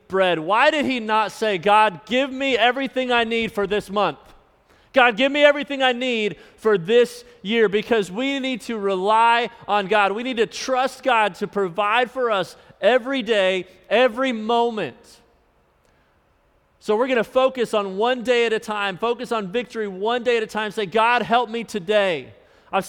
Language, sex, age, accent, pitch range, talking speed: English, male, 30-49, American, 180-225 Hz, 180 wpm